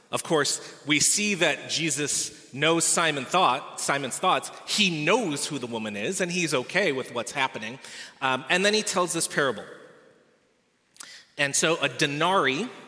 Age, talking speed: 30-49, 160 wpm